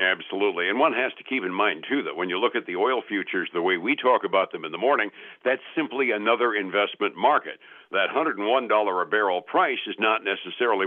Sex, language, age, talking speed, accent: male, English, 60-79, 215 wpm, American